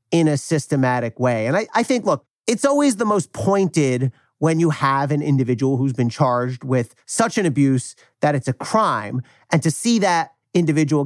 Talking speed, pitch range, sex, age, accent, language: 190 wpm, 130-170 Hz, male, 40-59, American, English